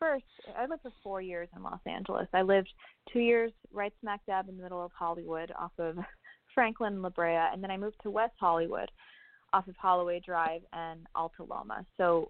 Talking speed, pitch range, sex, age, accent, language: 200 wpm, 175-220 Hz, female, 20-39, American, English